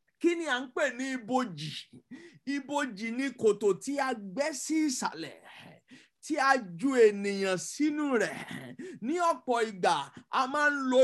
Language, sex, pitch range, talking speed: English, male, 215-275 Hz, 115 wpm